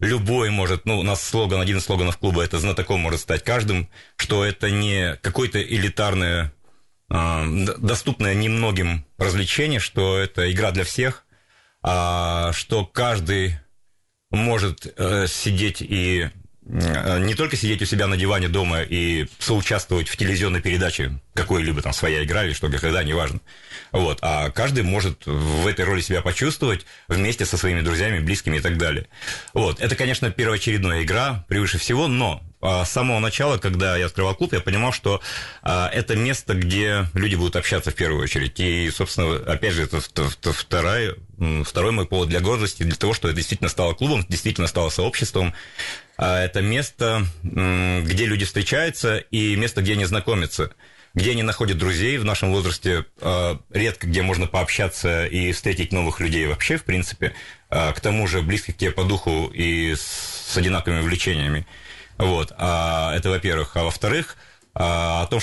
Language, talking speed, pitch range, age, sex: Russian, 155 wpm, 85-105 Hz, 30-49, male